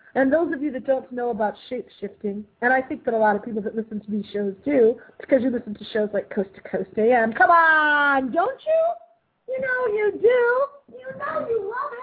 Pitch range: 225-305 Hz